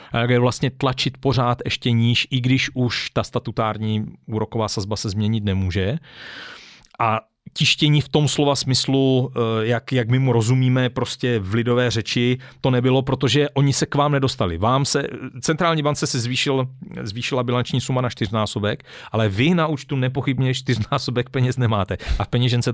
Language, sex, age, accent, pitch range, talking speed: Czech, male, 40-59, native, 120-140 Hz, 165 wpm